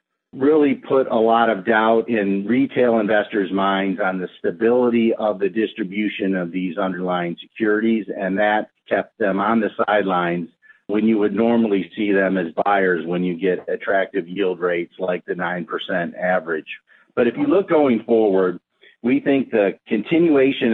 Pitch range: 105-120 Hz